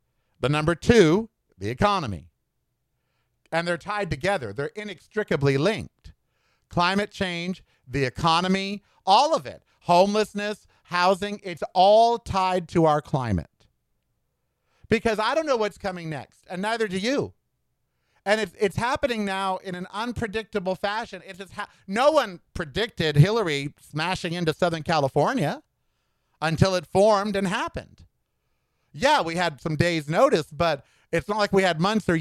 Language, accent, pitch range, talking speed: English, American, 165-210 Hz, 140 wpm